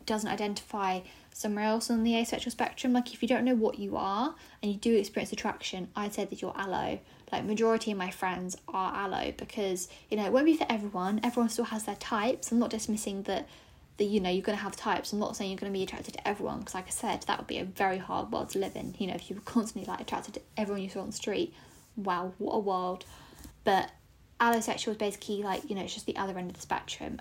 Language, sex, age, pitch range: English, female, 10-29, 200-235 Hz